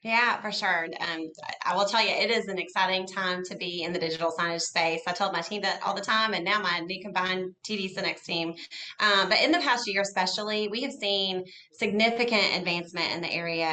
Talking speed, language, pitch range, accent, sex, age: 225 wpm, English, 170-200 Hz, American, female, 30-49